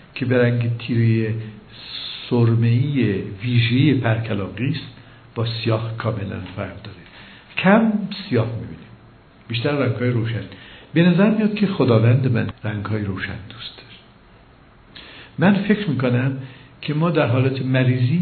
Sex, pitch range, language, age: male, 115-160 Hz, Persian, 60-79